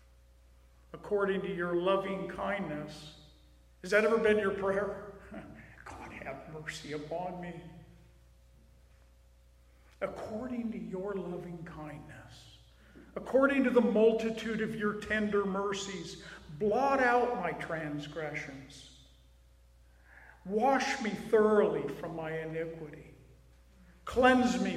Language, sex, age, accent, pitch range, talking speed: English, male, 50-69, American, 155-225 Hz, 100 wpm